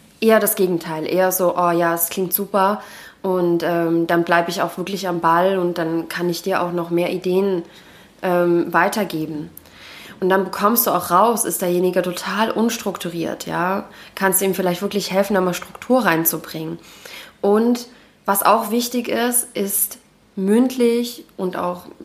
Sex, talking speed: female, 165 wpm